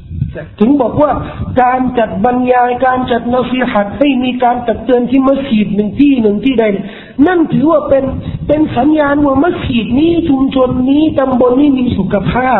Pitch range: 200-270 Hz